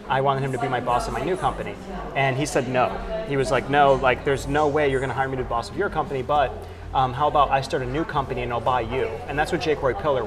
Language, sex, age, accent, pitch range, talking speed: English, male, 30-49, American, 120-140 Hz, 310 wpm